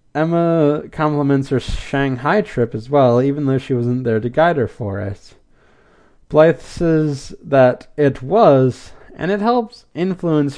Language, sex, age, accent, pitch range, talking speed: English, male, 20-39, American, 125-180 Hz, 145 wpm